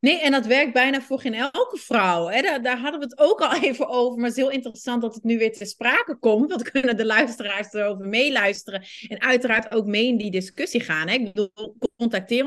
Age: 30-49